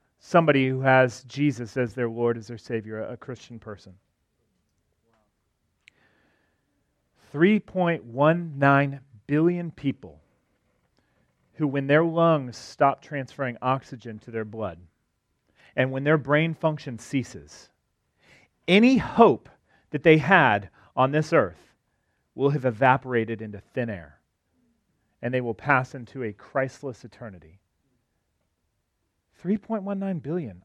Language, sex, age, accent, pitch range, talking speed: English, male, 40-59, American, 110-145 Hz, 110 wpm